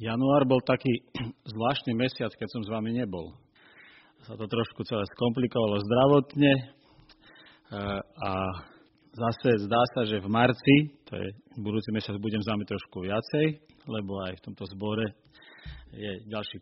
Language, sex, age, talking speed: Slovak, male, 40-59, 140 wpm